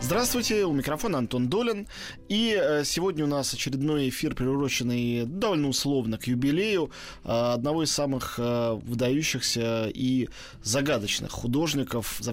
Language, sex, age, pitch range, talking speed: Russian, male, 20-39, 125-150 Hz, 115 wpm